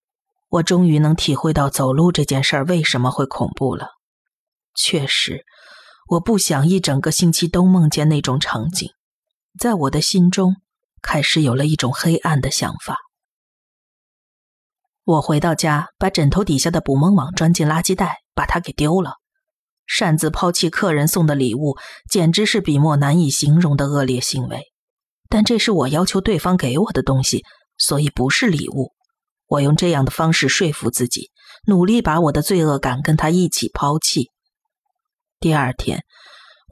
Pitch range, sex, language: 145-185 Hz, female, Chinese